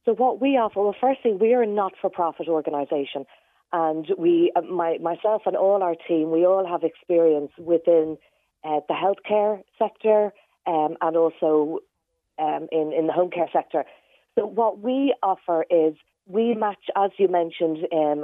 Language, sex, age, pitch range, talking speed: English, female, 40-59, 160-210 Hz, 160 wpm